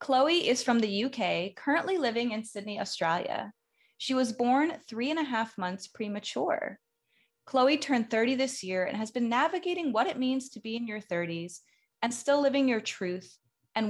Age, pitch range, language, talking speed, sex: 20-39, 200-275 Hz, English, 180 wpm, female